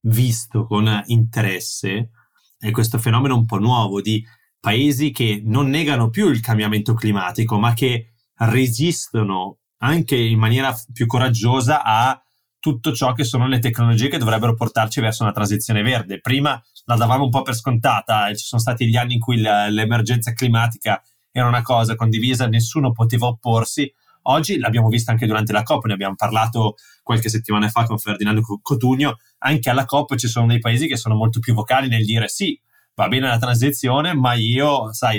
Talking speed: 175 wpm